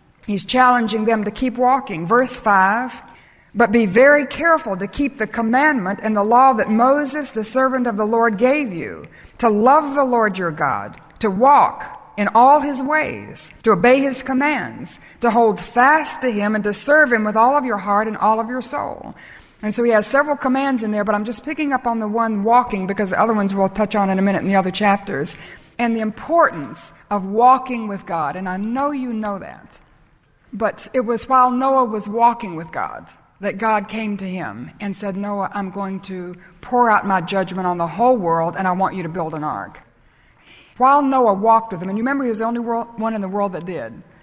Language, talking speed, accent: English, 220 wpm, American